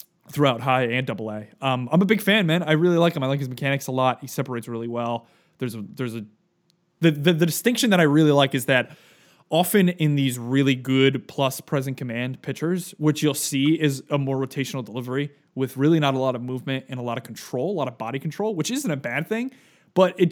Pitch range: 125-155 Hz